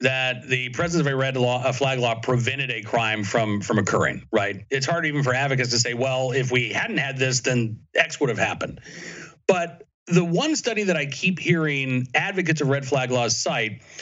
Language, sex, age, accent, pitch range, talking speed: English, male, 40-59, American, 125-180 Hz, 200 wpm